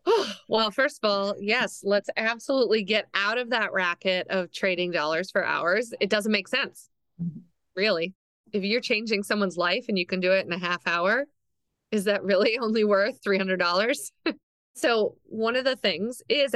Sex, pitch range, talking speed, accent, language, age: female, 175-215 Hz, 175 wpm, American, English, 30-49